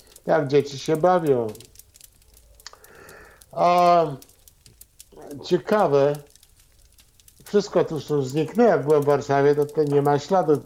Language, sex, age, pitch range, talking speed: Polish, male, 50-69, 140-175 Hz, 100 wpm